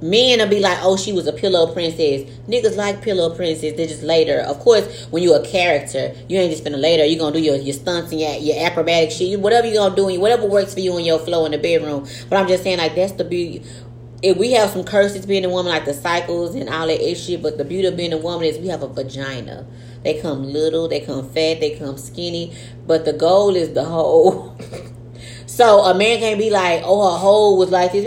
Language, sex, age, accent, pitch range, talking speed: English, female, 30-49, American, 145-195 Hz, 250 wpm